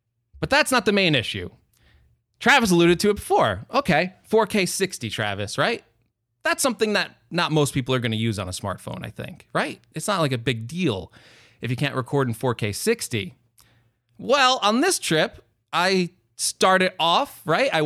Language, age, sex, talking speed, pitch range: English, 20-39, male, 180 wpm, 120-180 Hz